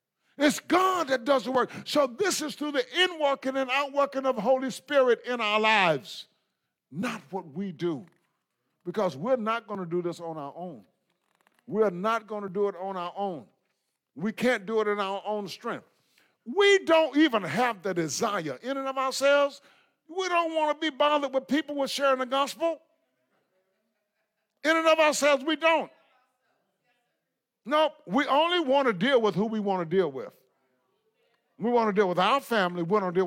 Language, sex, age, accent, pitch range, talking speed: English, male, 50-69, American, 205-295 Hz, 190 wpm